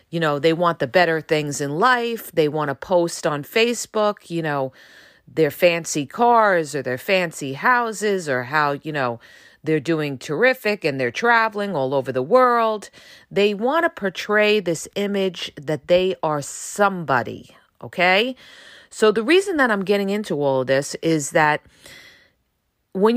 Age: 40-59